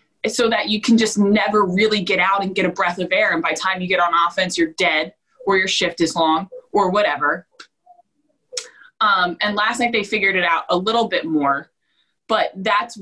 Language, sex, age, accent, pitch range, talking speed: English, female, 20-39, American, 180-230 Hz, 210 wpm